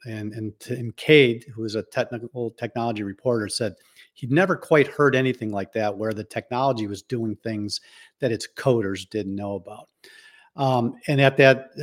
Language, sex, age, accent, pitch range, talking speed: English, male, 50-69, American, 105-135 Hz, 165 wpm